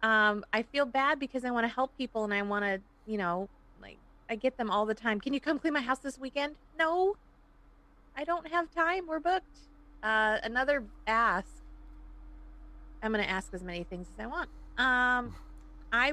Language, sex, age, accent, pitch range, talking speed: English, female, 30-49, American, 155-250 Hz, 195 wpm